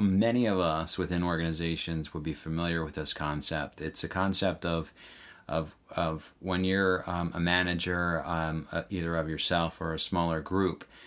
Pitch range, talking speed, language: 85-100 Hz, 165 wpm, English